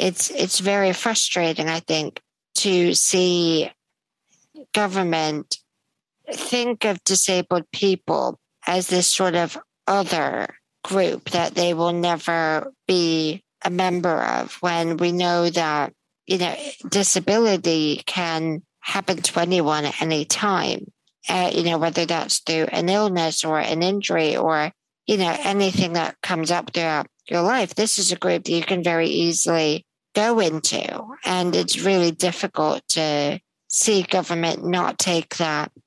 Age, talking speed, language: 50-69, 140 wpm, English